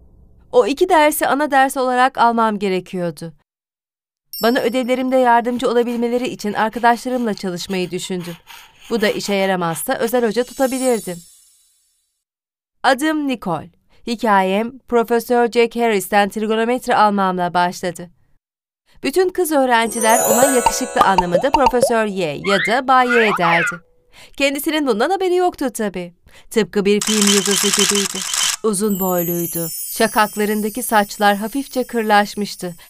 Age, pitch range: 40-59, 190-250 Hz